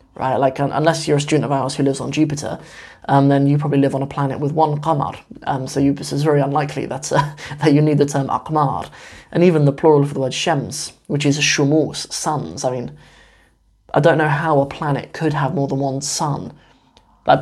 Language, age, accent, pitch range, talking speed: English, 20-39, British, 140-155 Hz, 225 wpm